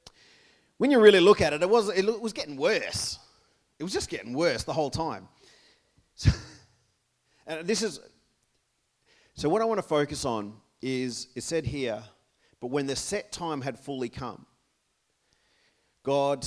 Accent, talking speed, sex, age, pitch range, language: Australian, 160 wpm, male, 40-59, 125-155 Hz, English